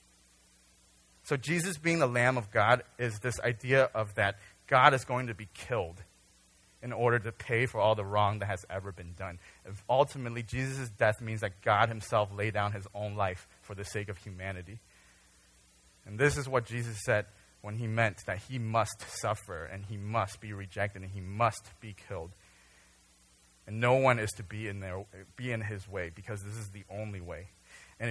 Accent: American